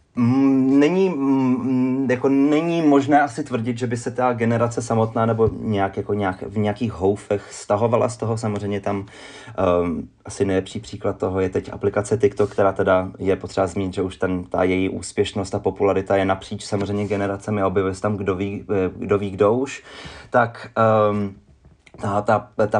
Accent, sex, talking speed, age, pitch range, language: native, male, 165 wpm, 30-49, 100-115 Hz, Czech